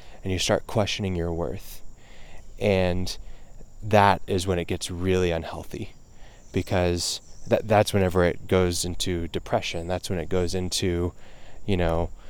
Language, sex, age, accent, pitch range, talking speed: English, male, 20-39, American, 85-100 Hz, 135 wpm